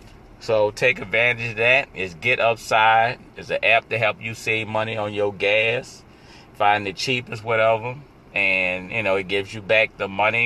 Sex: male